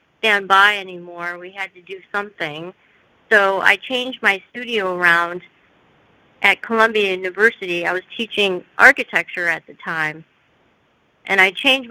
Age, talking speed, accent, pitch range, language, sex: 40-59, 135 wpm, American, 185-225 Hz, English, female